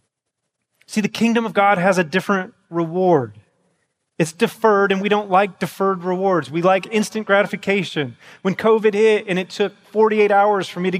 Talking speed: 175 wpm